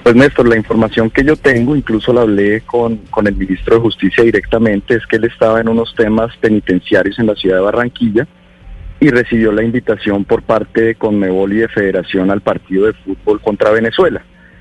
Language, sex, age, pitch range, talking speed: Spanish, male, 40-59, 105-120 Hz, 195 wpm